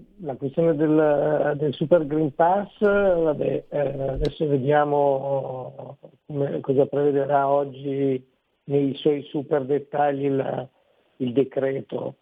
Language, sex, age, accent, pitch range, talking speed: Italian, male, 60-79, native, 135-155 Hz, 110 wpm